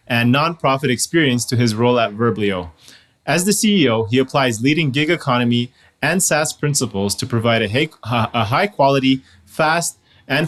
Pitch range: 115-145 Hz